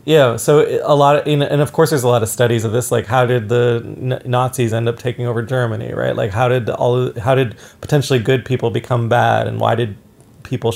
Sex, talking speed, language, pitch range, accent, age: male, 230 wpm, English, 110-125 Hz, American, 30-49